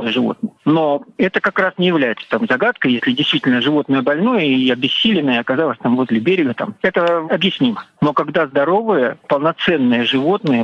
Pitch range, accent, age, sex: 135-180 Hz, native, 50-69, male